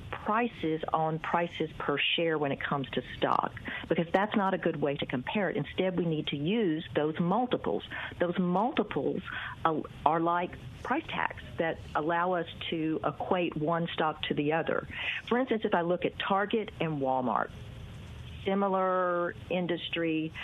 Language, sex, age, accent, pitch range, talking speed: English, female, 50-69, American, 145-185 Hz, 155 wpm